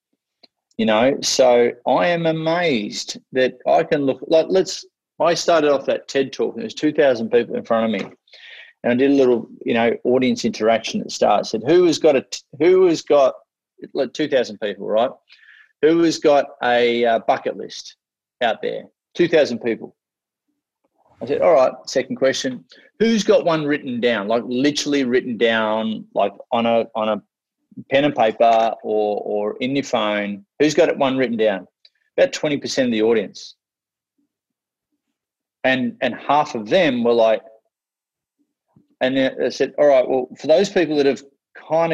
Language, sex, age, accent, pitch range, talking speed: English, male, 30-49, Australian, 115-165 Hz, 170 wpm